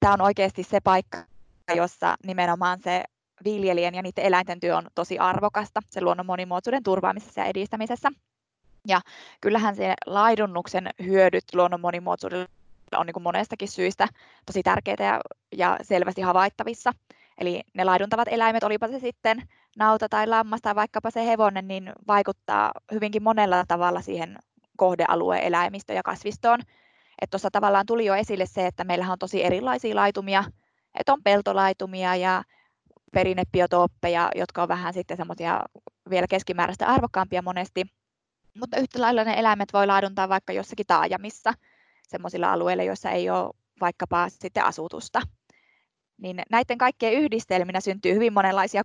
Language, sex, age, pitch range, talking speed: Finnish, female, 20-39, 180-215 Hz, 140 wpm